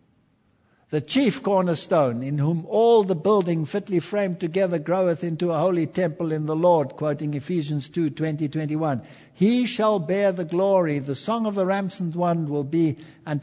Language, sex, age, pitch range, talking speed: English, male, 60-79, 130-180 Hz, 175 wpm